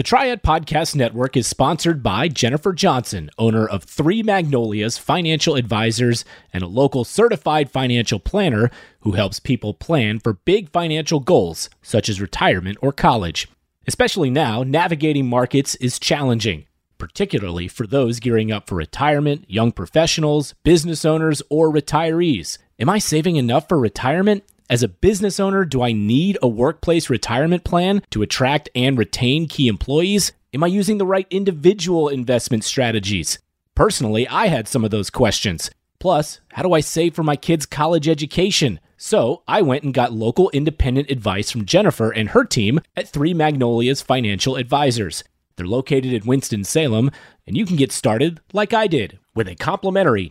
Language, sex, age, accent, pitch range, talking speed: English, male, 30-49, American, 115-165 Hz, 160 wpm